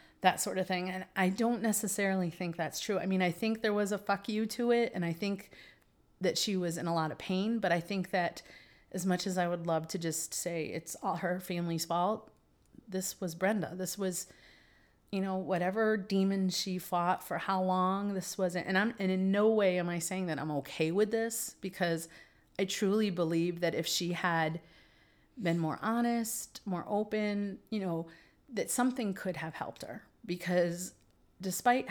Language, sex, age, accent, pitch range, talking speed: English, female, 30-49, American, 160-195 Hz, 195 wpm